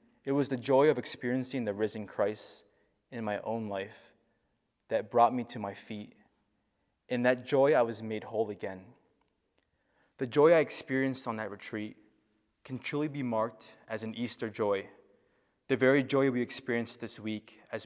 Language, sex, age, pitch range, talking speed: English, male, 20-39, 105-125 Hz, 170 wpm